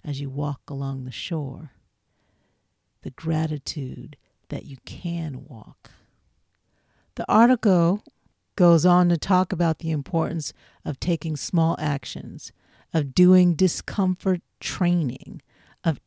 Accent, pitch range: American, 140-180 Hz